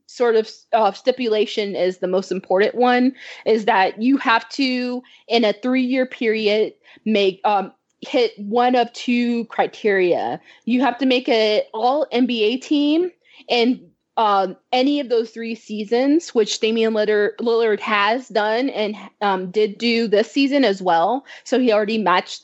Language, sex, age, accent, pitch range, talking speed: English, female, 20-39, American, 200-245 Hz, 150 wpm